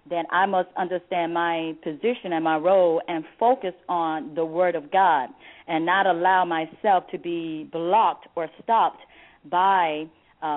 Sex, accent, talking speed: female, American, 155 wpm